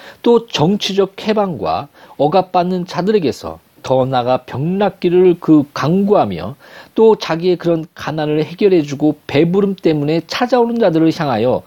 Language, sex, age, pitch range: Korean, male, 40-59, 125-195 Hz